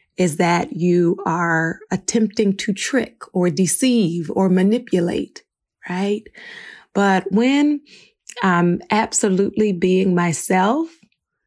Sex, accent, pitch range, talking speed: female, American, 175-210 Hz, 95 wpm